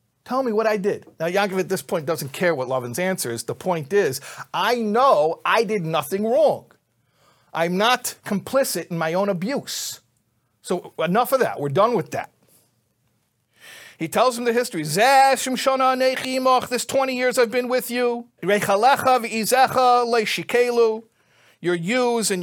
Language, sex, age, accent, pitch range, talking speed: English, male, 50-69, American, 190-250 Hz, 145 wpm